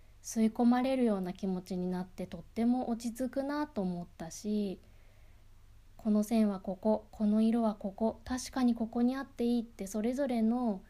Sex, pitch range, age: female, 165-230 Hz, 20-39